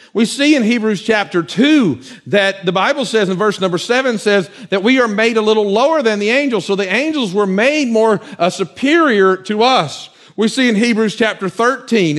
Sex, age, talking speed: male, 50-69, 200 wpm